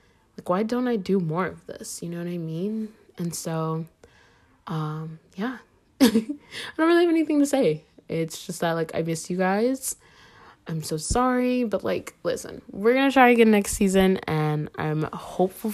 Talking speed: 175 wpm